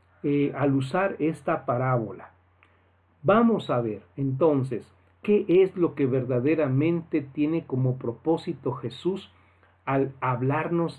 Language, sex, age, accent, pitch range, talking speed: Spanish, male, 50-69, Mexican, 120-155 Hz, 110 wpm